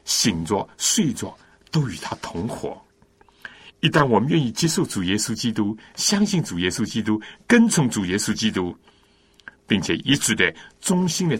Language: Chinese